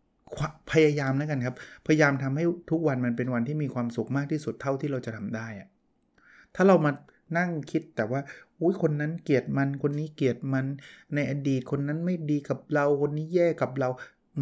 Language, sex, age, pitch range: Thai, male, 20-39, 125-155 Hz